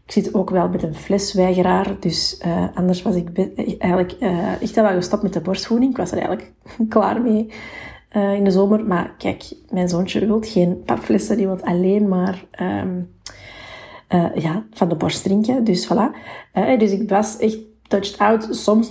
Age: 30-49